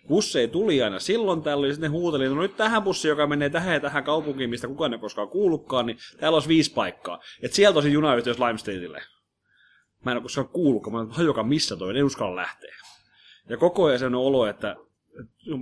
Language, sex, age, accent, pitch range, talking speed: Finnish, male, 30-49, native, 115-150 Hz, 215 wpm